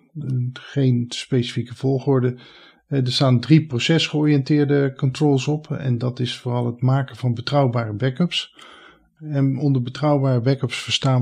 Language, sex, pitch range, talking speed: Dutch, male, 120-135 Hz, 125 wpm